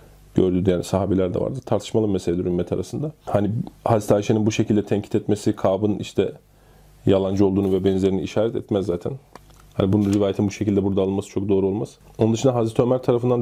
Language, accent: Turkish, native